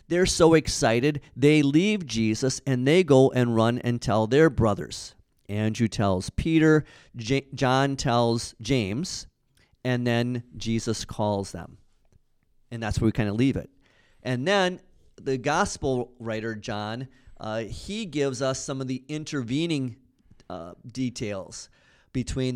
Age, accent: 40-59, American